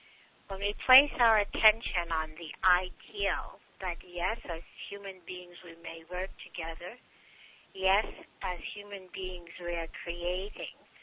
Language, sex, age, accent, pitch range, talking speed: English, female, 60-79, American, 170-205 Hz, 130 wpm